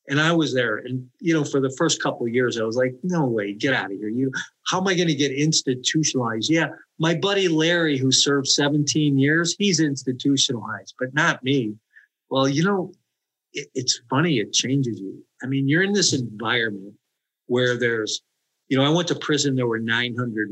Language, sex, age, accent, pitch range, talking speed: English, male, 50-69, American, 115-140 Hz, 200 wpm